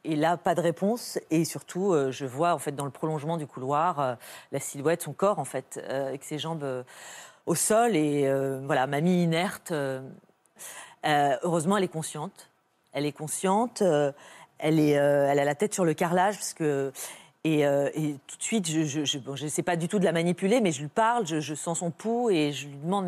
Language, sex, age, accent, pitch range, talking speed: French, female, 40-59, French, 150-195 Hz, 235 wpm